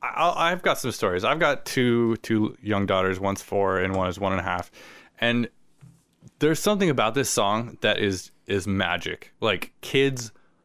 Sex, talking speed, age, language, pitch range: male, 175 wpm, 20-39, English, 95-115 Hz